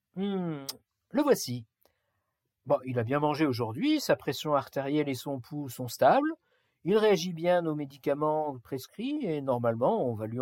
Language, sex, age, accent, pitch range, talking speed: French, male, 50-69, French, 125-210 Hz, 160 wpm